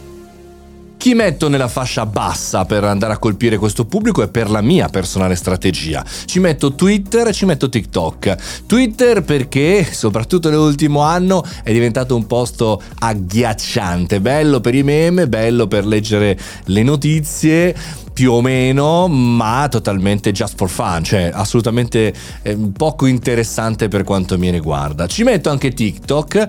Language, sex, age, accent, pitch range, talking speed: Italian, male, 30-49, native, 105-150 Hz, 145 wpm